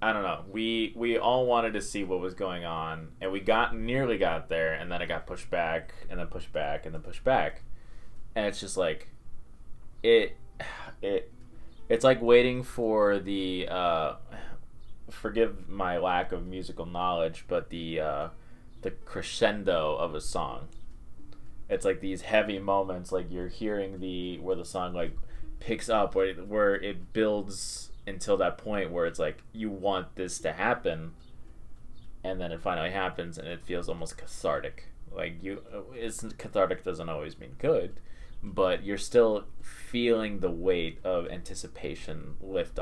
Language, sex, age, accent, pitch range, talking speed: English, male, 20-39, American, 85-105 Hz, 165 wpm